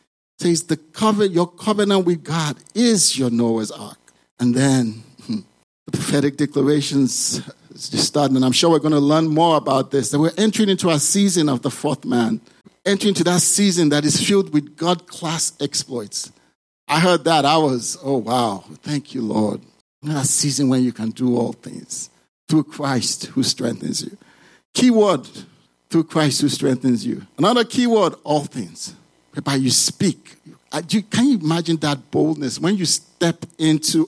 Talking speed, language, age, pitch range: 165 wpm, English, 50-69, 125-170 Hz